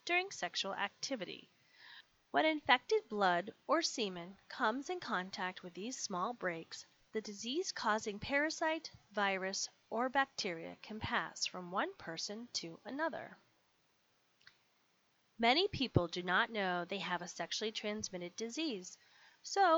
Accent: American